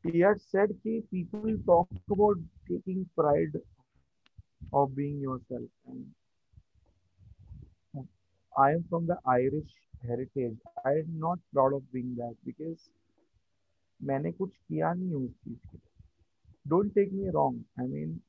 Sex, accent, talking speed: male, native, 345 wpm